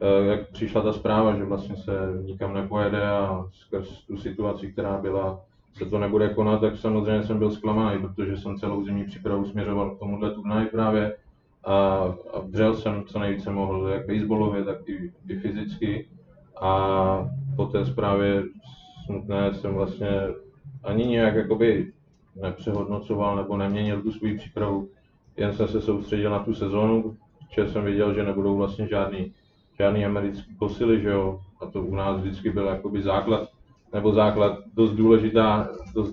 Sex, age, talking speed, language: male, 20-39, 150 wpm, Czech